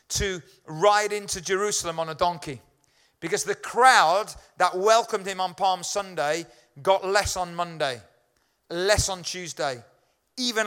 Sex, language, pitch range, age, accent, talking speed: male, English, 165-215 Hz, 40-59, British, 135 wpm